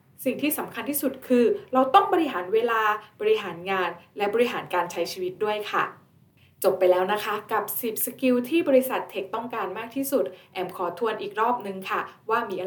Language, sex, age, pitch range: Thai, female, 20-39, 190-260 Hz